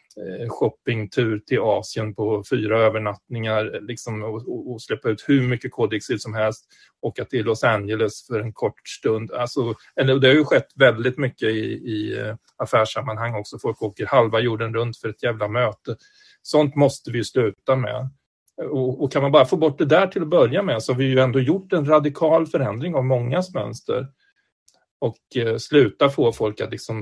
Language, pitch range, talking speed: Swedish, 110-135 Hz, 180 wpm